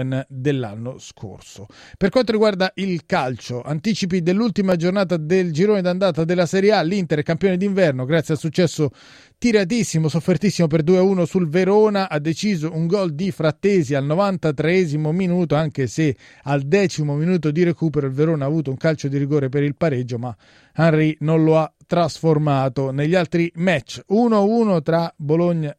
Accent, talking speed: native, 160 wpm